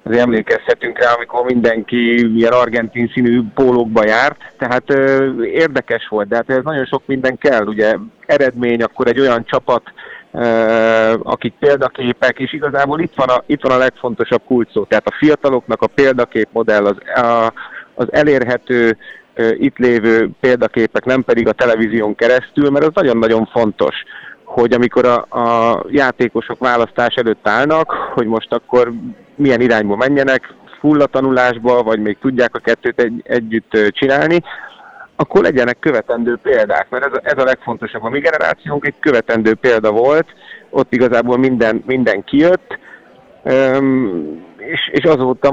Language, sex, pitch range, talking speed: Hungarian, male, 115-130 Hz, 145 wpm